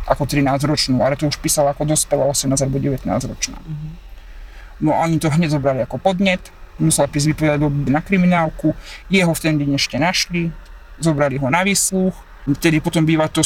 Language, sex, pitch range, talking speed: Slovak, male, 145-175 Hz, 170 wpm